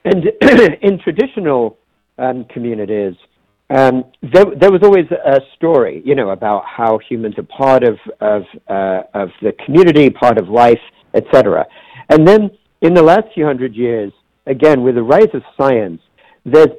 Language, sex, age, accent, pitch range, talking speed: English, male, 50-69, American, 120-155 Hz, 155 wpm